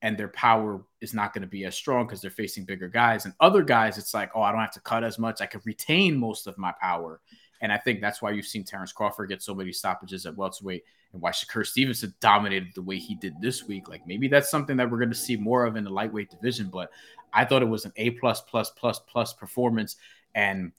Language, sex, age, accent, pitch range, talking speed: English, male, 20-39, American, 100-120 Hz, 250 wpm